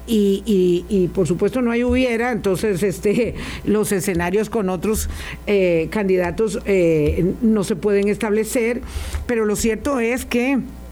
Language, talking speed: Spanish, 145 wpm